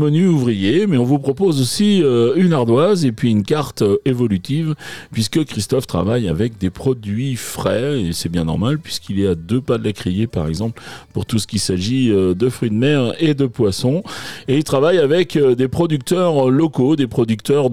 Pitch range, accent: 110-145 Hz, French